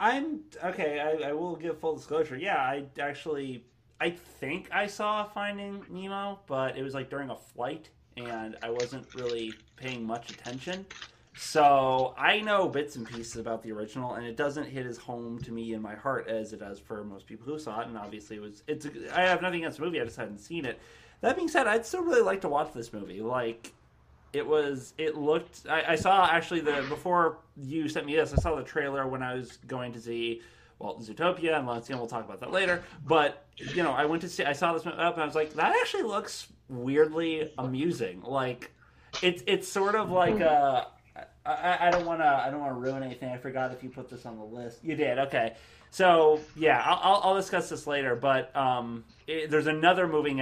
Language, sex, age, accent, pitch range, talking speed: English, male, 20-39, American, 120-170 Hz, 225 wpm